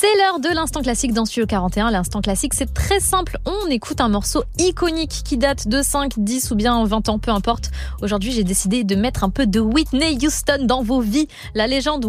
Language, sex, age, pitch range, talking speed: French, female, 20-39, 215-290 Hz, 220 wpm